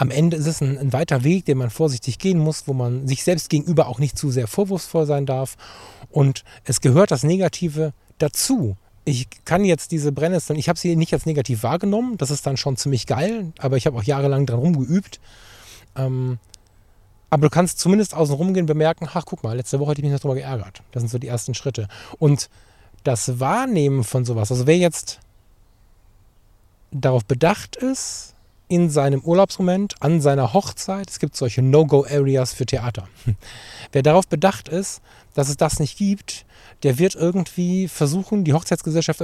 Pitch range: 120-165 Hz